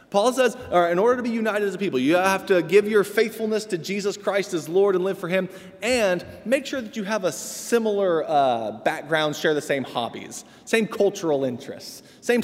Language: English